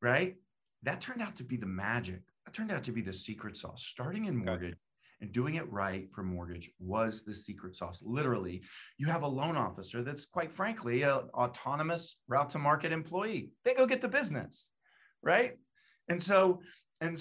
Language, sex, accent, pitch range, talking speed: English, male, American, 125-180 Hz, 185 wpm